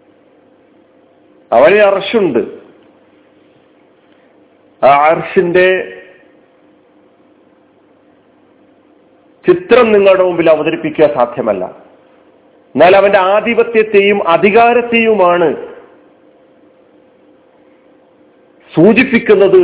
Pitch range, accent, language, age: 150-205 Hz, native, Malayalam, 50-69